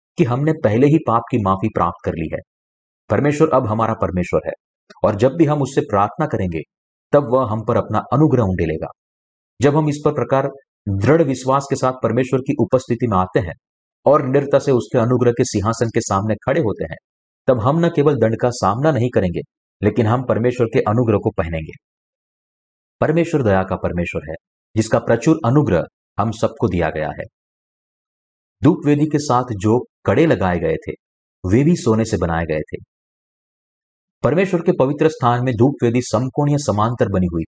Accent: native